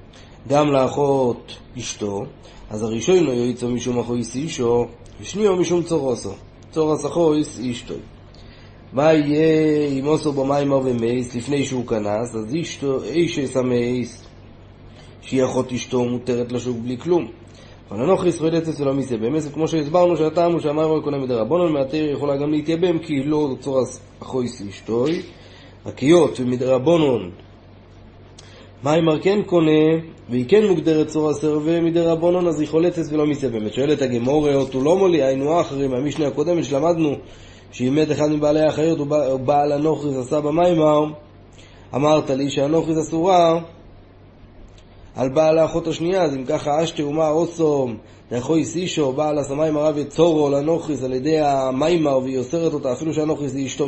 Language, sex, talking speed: Hebrew, male, 135 wpm